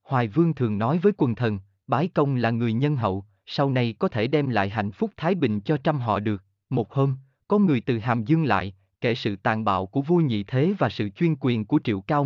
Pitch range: 110-155 Hz